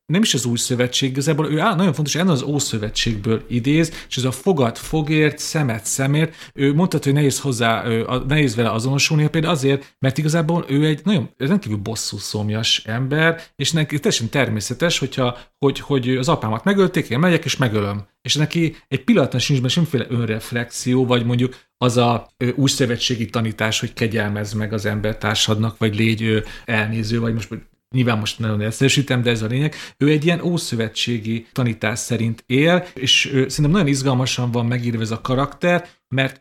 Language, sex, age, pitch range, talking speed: Hungarian, male, 40-59, 115-150 Hz, 170 wpm